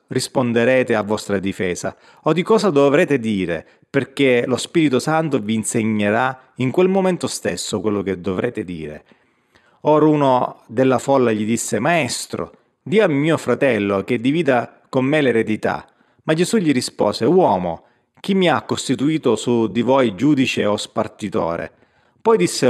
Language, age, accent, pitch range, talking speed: Italian, 30-49, native, 110-140 Hz, 150 wpm